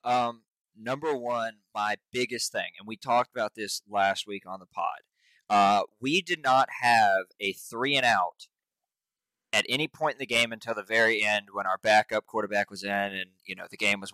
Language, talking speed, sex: English, 200 wpm, male